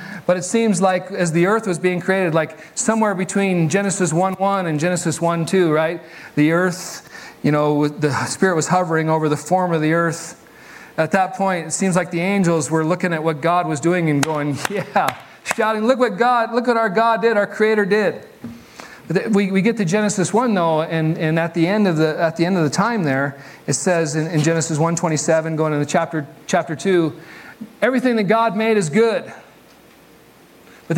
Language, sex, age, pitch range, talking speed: English, male, 40-59, 160-200 Hz, 195 wpm